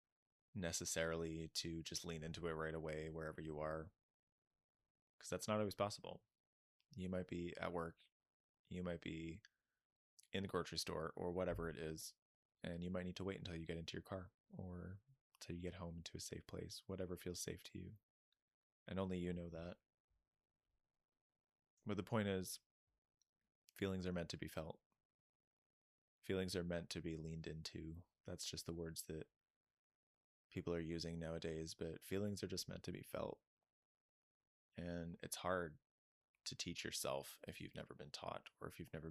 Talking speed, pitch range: 170 wpm, 80-95 Hz